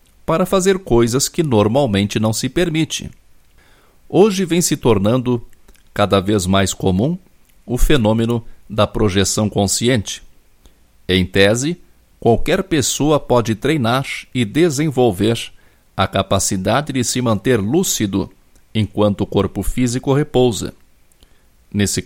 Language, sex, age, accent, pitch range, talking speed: Portuguese, male, 60-79, Brazilian, 100-140 Hz, 110 wpm